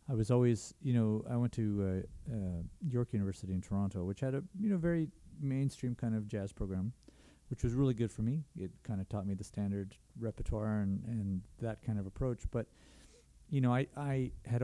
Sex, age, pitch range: male, 40-59, 100-125 Hz